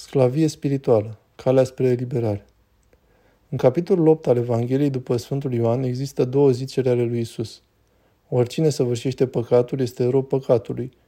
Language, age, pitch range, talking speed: Romanian, 20-39, 120-135 Hz, 135 wpm